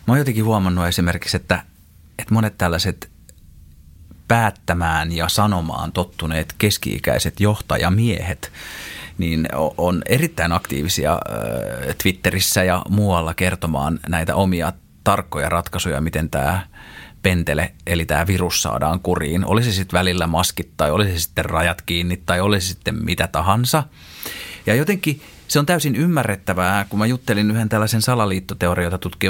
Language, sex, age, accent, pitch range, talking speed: Finnish, male, 30-49, native, 85-110 Hz, 125 wpm